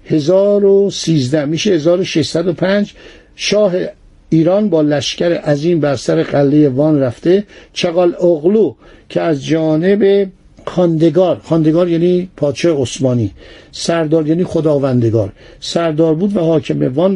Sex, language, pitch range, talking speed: male, Persian, 155-190 Hz, 110 wpm